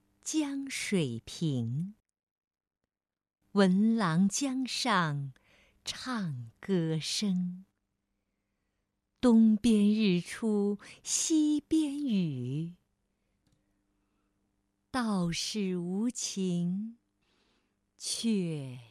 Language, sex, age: Chinese, female, 50-69